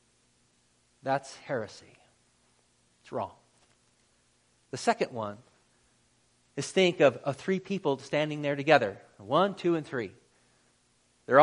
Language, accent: English, American